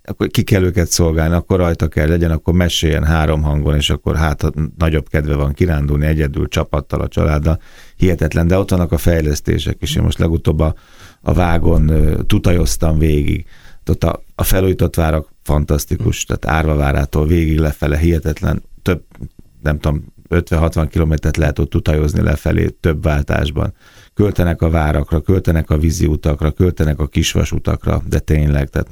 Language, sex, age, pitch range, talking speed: Hungarian, male, 30-49, 75-85 Hz, 155 wpm